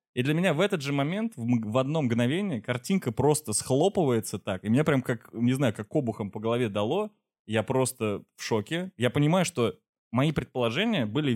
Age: 20-39